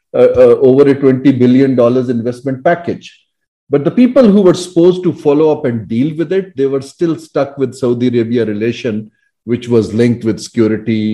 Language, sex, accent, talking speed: English, male, Indian, 190 wpm